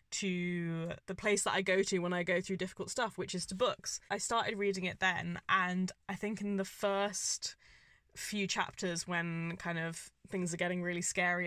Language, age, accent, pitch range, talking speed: English, 10-29, British, 175-210 Hz, 200 wpm